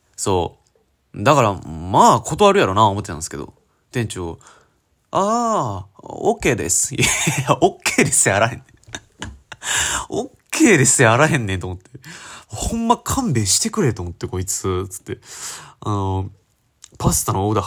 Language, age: Japanese, 20-39